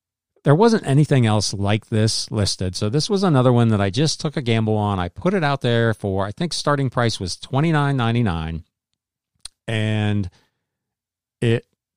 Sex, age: male, 40-59